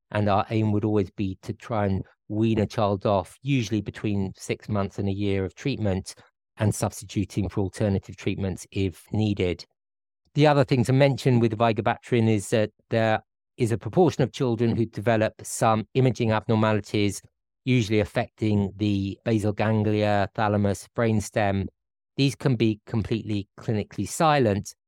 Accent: British